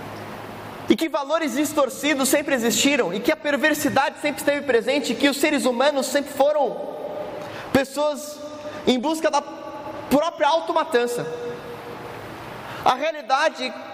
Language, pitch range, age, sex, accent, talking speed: Portuguese, 225-290 Hz, 20-39, male, Brazilian, 120 wpm